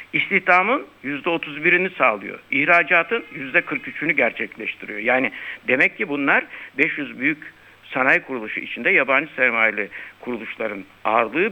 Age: 60-79